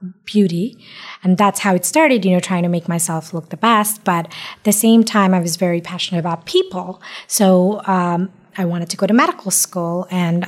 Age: 20-39